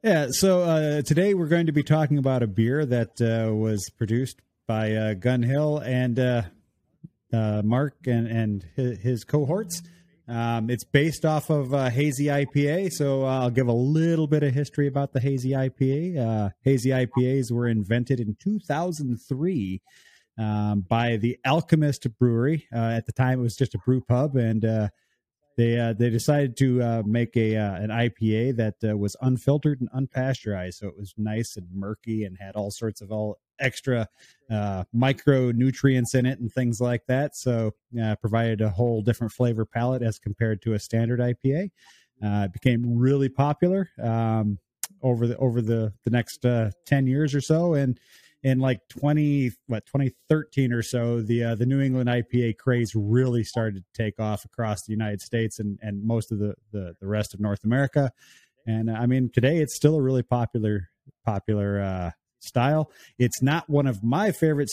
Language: English